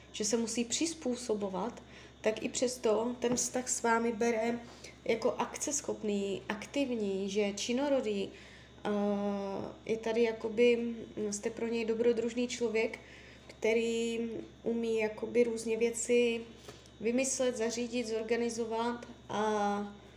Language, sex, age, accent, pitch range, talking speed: Czech, female, 20-39, native, 215-245 Hz, 100 wpm